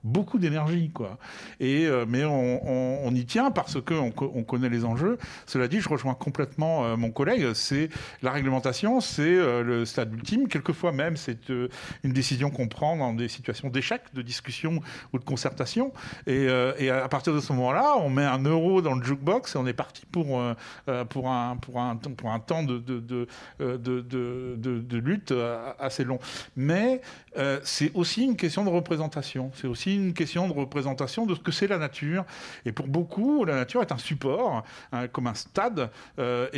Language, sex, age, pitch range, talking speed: French, male, 50-69, 125-160 Hz, 200 wpm